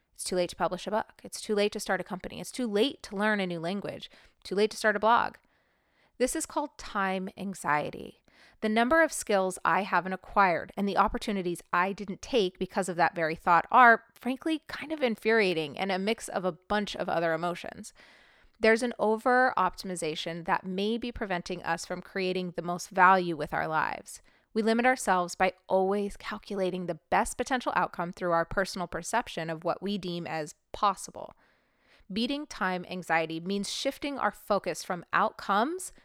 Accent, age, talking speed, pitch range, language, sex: American, 30-49, 185 wpm, 175-220 Hz, English, female